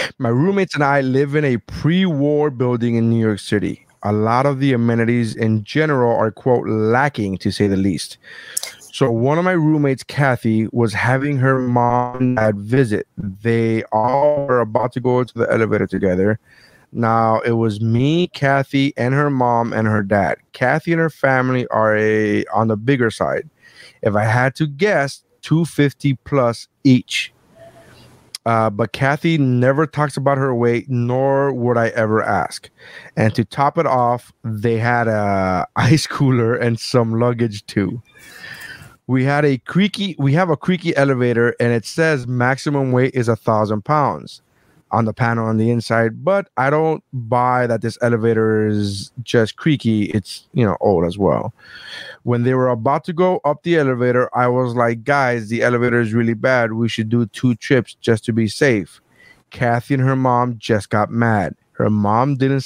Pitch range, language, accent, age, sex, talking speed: 110-140 Hz, English, American, 30-49, male, 175 wpm